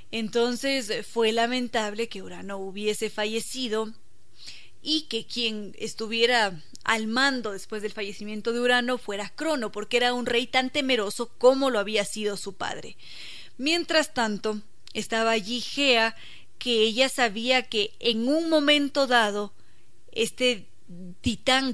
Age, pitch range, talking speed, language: 20-39, 215-260 Hz, 130 wpm, Spanish